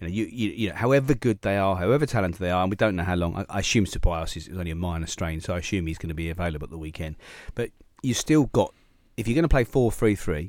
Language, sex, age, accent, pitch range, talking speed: English, male, 40-59, British, 85-115 Hz, 295 wpm